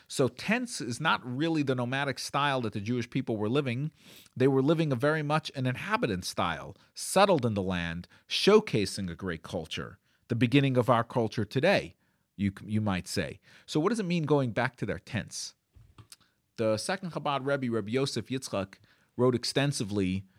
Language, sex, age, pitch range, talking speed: English, male, 40-59, 105-140 Hz, 175 wpm